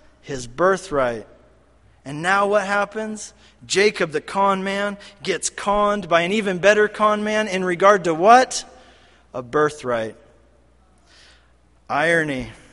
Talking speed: 120 wpm